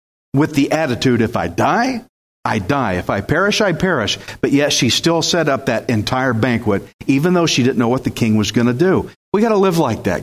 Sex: male